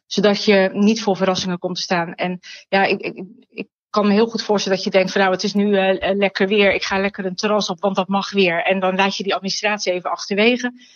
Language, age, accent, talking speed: Dutch, 30-49, Dutch, 260 wpm